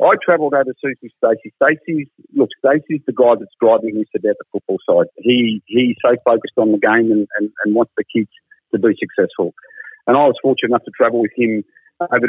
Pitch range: 110-135 Hz